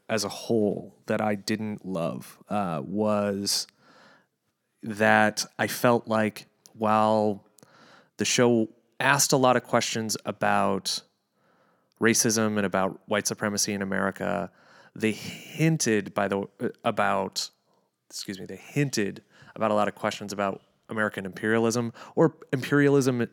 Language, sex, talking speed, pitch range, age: English, male, 125 wpm, 100-120 Hz, 30-49